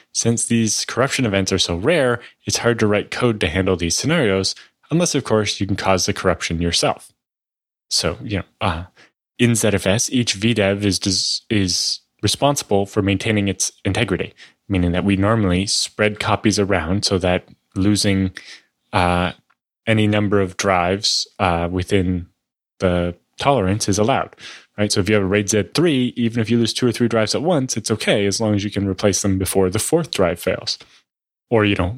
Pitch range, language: 95-110 Hz, English